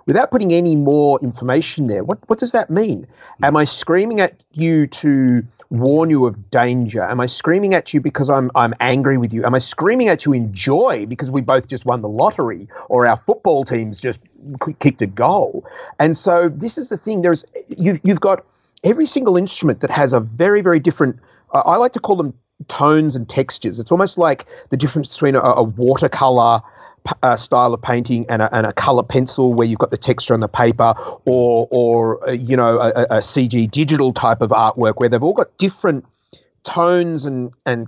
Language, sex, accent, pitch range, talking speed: English, male, Australian, 120-165 Hz, 210 wpm